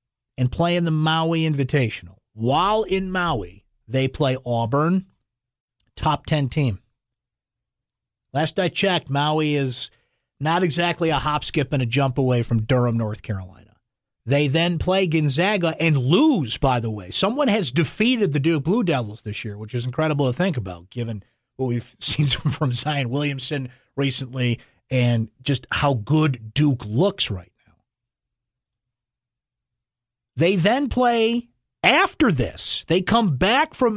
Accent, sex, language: American, male, English